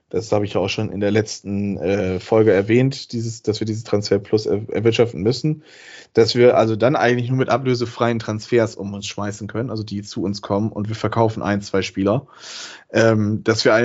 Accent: German